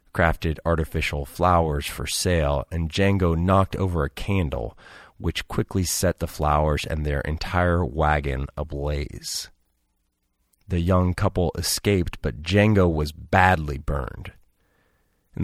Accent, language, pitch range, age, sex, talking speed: American, English, 75-95 Hz, 40-59, male, 120 wpm